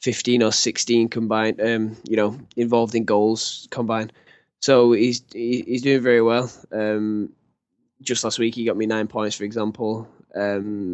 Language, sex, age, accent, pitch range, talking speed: English, male, 10-29, British, 110-120 Hz, 165 wpm